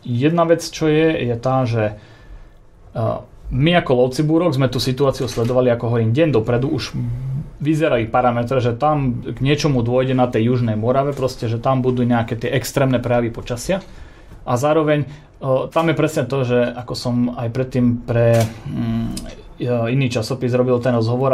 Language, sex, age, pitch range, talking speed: Slovak, male, 30-49, 120-145 Hz, 160 wpm